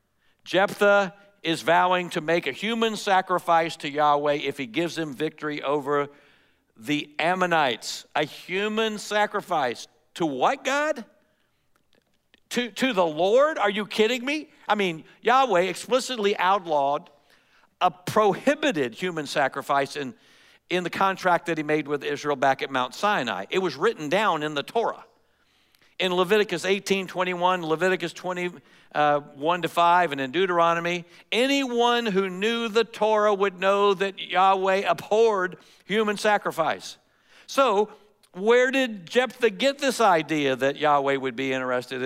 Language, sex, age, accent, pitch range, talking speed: English, male, 60-79, American, 150-210 Hz, 140 wpm